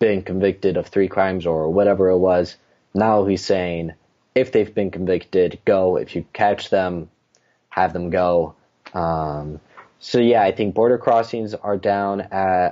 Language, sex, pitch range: English, male, 85-110 Hz